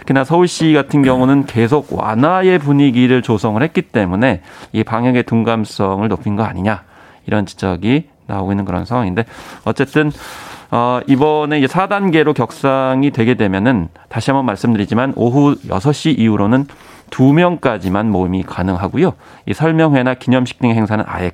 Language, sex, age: Korean, male, 30-49